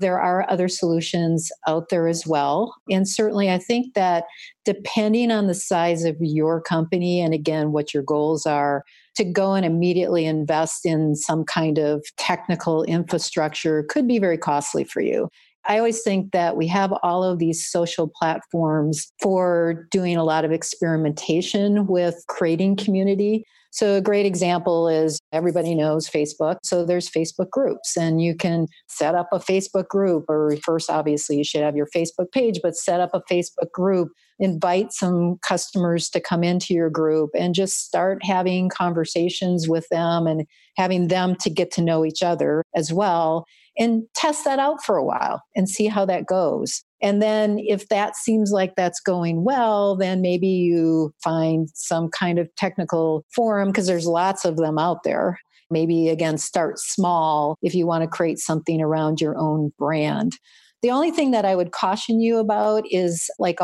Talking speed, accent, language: 175 wpm, American, English